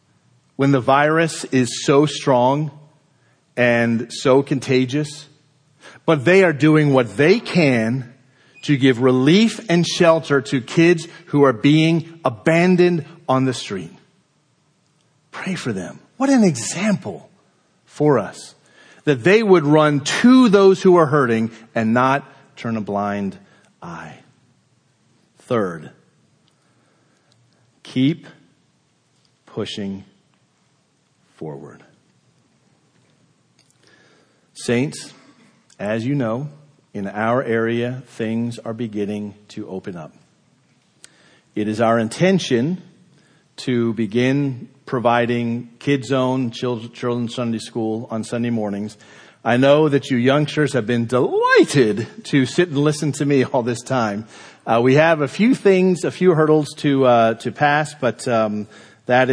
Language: English